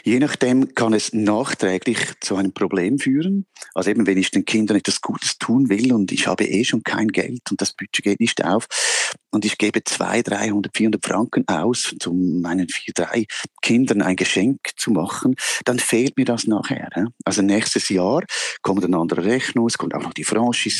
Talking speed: 190 wpm